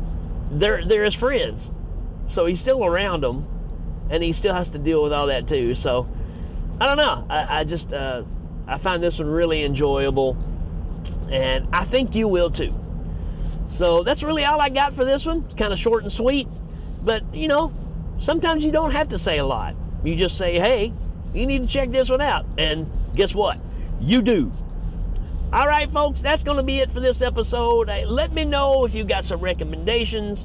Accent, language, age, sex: American, English, 40-59, male